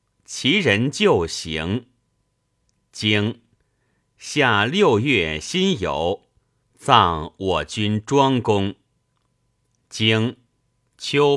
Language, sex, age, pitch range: Chinese, male, 50-69, 100-140 Hz